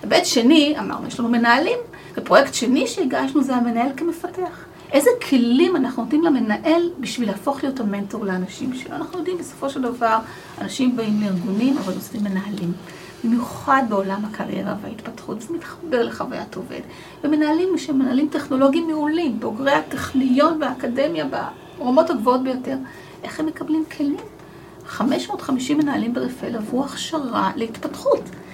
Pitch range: 240-310 Hz